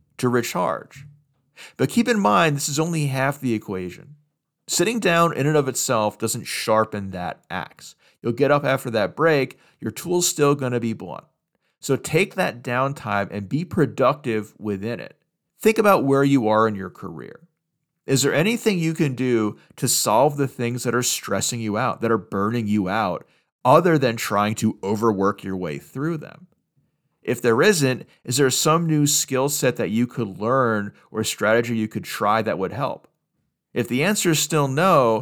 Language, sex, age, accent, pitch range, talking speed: English, male, 40-59, American, 110-150 Hz, 185 wpm